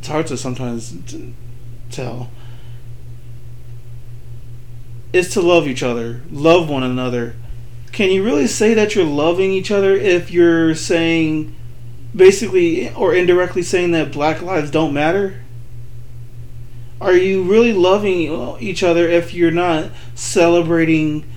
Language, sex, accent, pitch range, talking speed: English, male, American, 120-175 Hz, 125 wpm